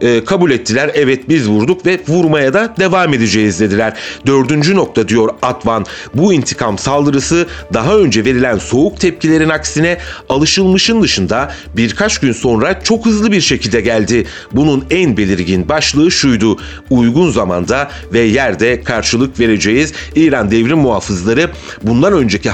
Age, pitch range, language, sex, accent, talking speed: 40-59, 110-150 Hz, Turkish, male, native, 135 wpm